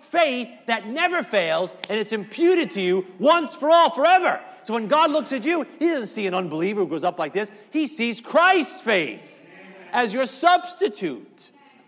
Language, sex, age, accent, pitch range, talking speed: English, male, 40-59, American, 155-265 Hz, 180 wpm